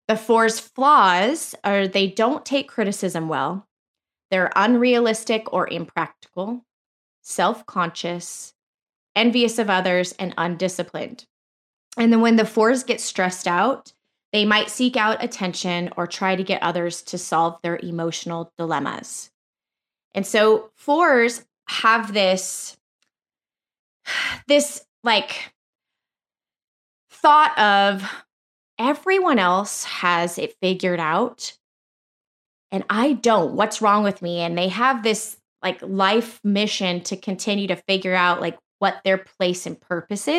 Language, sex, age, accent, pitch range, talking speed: English, female, 20-39, American, 185-230 Hz, 120 wpm